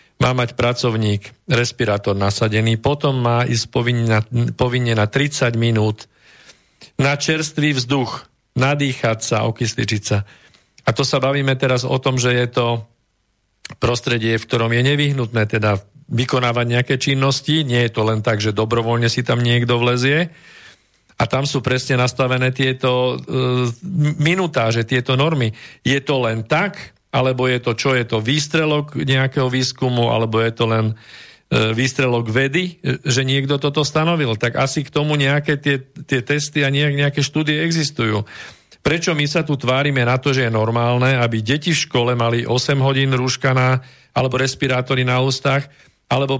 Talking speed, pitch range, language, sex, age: 155 wpm, 120-140 Hz, Slovak, male, 50-69